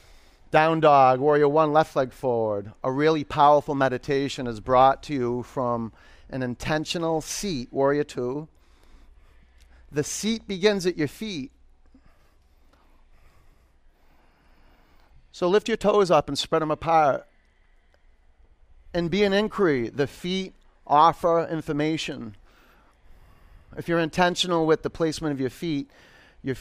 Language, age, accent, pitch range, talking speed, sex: English, 40-59, American, 120-160 Hz, 120 wpm, male